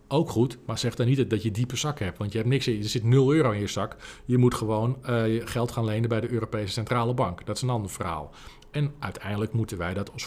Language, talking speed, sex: Dutch, 275 wpm, male